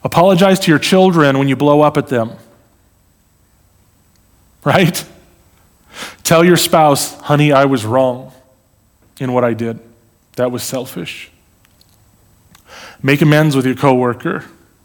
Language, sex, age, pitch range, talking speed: English, male, 30-49, 120-165 Hz, 120 wpm